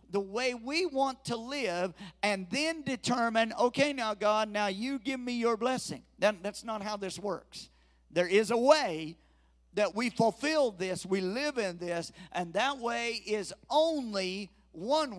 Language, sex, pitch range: English, male, 165-225 Hz